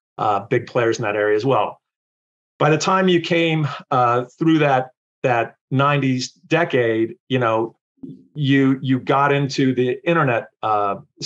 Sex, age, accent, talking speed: male, 40-59, American, 150 wpm